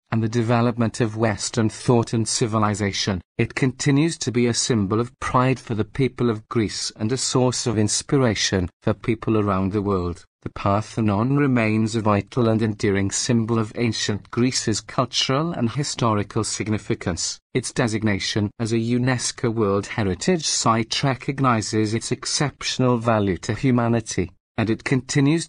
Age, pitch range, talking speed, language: 40-59, 105-125 Hz, 150 wpm, English